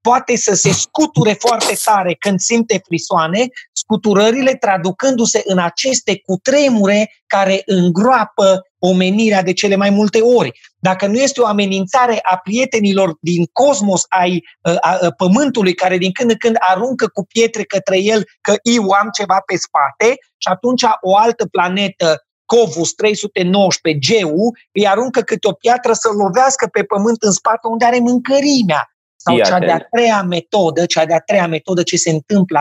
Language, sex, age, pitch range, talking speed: Romanian, male, 30-49, 185-235 Hz, 160 wpm